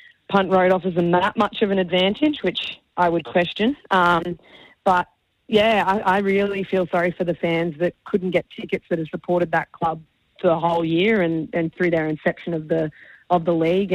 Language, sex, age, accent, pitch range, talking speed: English, female, 20-39, Australian, 170-190 Hz, 200 wpm